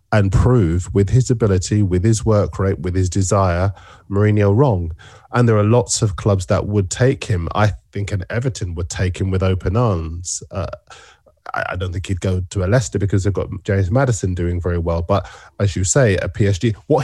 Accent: British